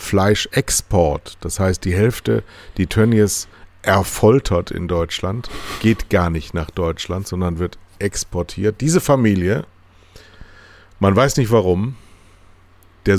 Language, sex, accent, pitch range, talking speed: German, male, German, 85-100 Hz, 115 wpm